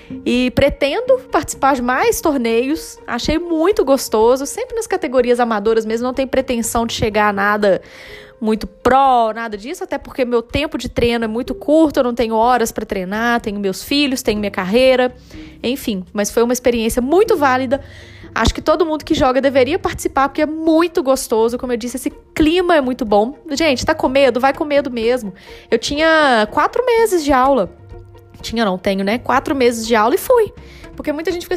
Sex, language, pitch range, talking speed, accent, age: female, Portuguese, 230-300 Hz, 190 wpm, Brazilian, 20-39